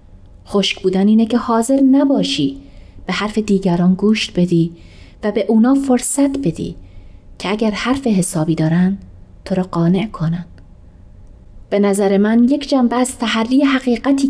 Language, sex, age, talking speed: Persian, female, 30-49, 140 wpm